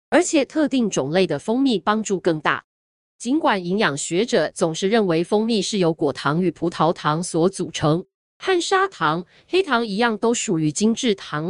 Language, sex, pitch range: Chinese, female, 180-265 Hz